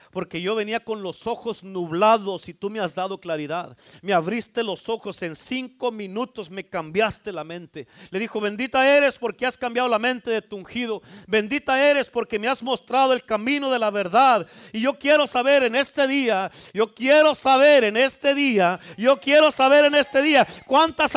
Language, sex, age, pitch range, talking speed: Spanish, male, 40-59, 220-285 Hz, 190 wpm